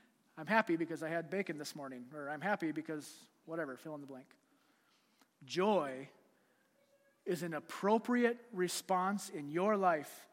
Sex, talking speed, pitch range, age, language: male, 145 wpm, 165-205 Hz, 30-49, English